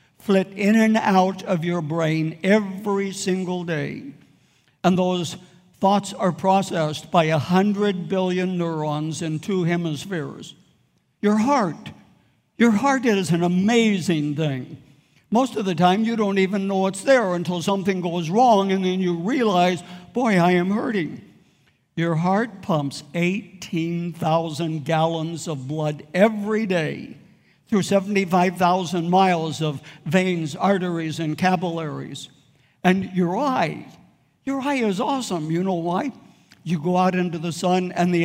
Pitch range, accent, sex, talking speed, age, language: 160-195 Hz, American, male, 140 wpm, 60-79, English